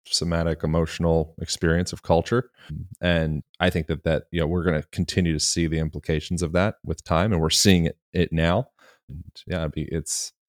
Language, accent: English, American